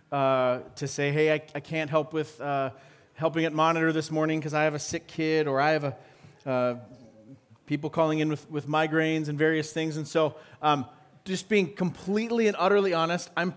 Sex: male